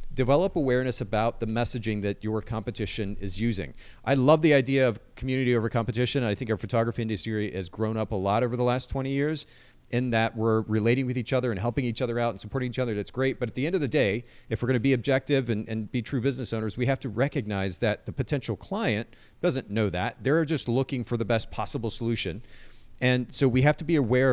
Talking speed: 235 wpm